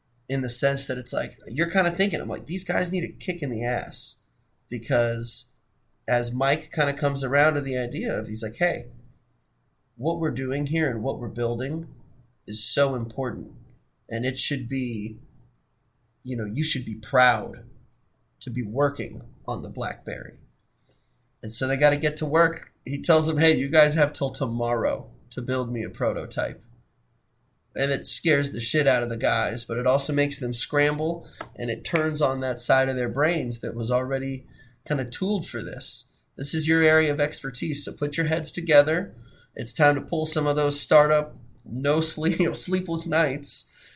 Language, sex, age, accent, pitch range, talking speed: English, male, 20-39, American, 120-150 Hz, 190 wpm